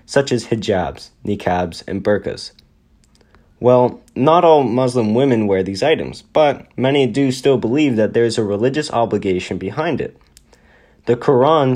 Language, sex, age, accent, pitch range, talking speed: English, male, 20-39, American, 100-130 Hz, 150 wpm